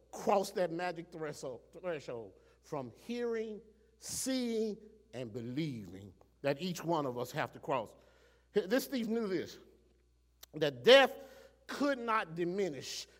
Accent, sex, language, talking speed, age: American, male, English, 125 wpm, 50-69